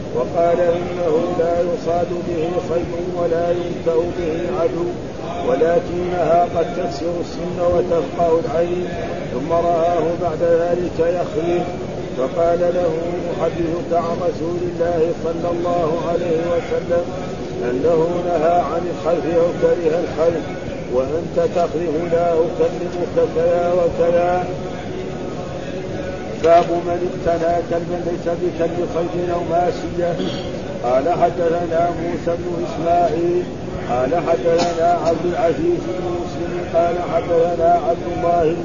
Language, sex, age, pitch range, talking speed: Arabic, male, 50-69, 170-175 Hz, 110 wpm